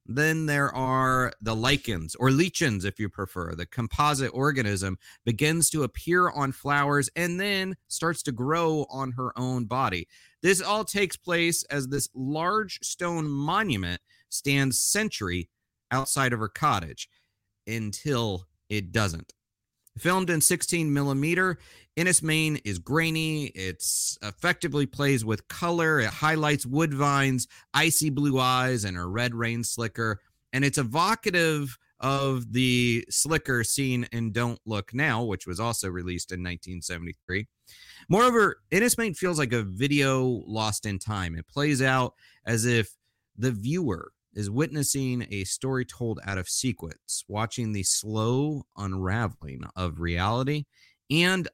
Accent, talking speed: American, 135 wpm